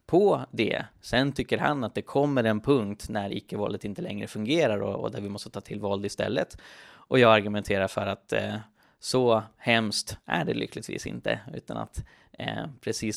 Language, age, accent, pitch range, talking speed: Swedish, 20-39, native, 105-125 Hz, 180 wpm